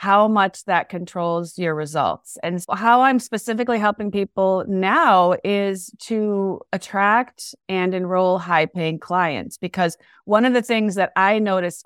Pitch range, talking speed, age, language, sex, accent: 175-215 Hz, 140 wpm, 30-49, English, female, American